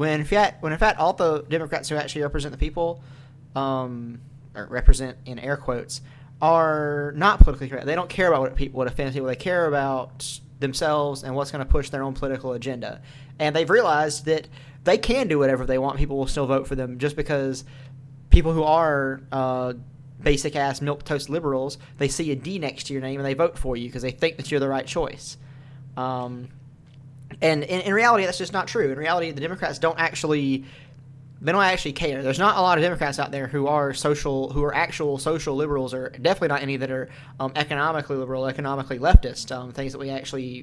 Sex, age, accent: male, 20-39, American